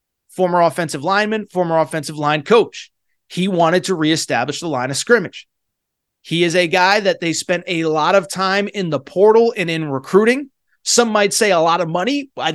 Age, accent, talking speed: 30-49, American, 190 wpm